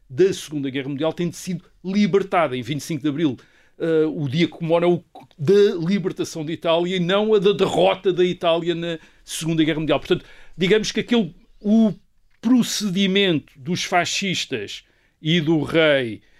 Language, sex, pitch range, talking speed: Portuguese, male, 150-190 Hz, 165 wpm